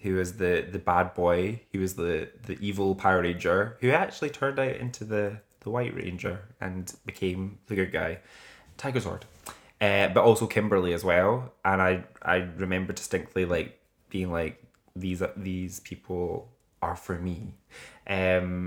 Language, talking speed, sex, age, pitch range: English, 160 wpm, male, 20-39, 90-105 Hz